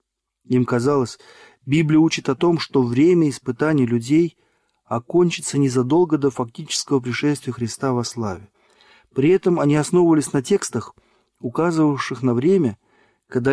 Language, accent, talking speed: Russian, native, 125 wpm